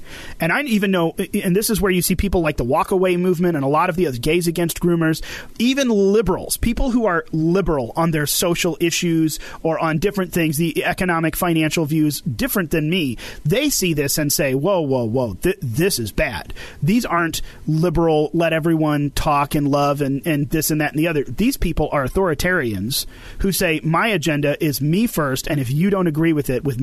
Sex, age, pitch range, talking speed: male, 30-49, 150-185 Hz, 205 wpm